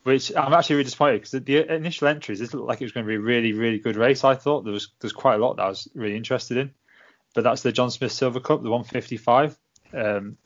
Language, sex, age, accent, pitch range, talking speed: English, male, 20-39, British, 105-125 Hz, 270 wpm